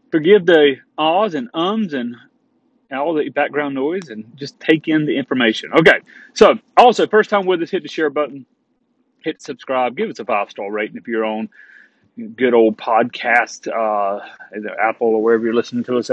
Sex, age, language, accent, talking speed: male, 30-49, English, American, 180 wpm